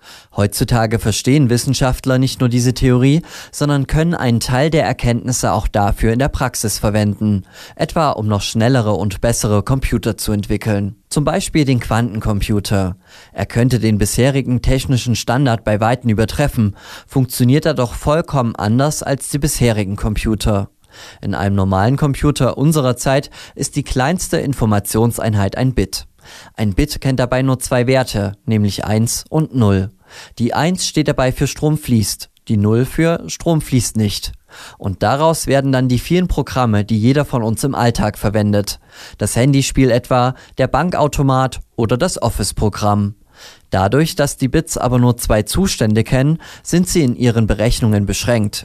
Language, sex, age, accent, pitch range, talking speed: German, male, 20-39, German, 105-135 Hz, 150 wpm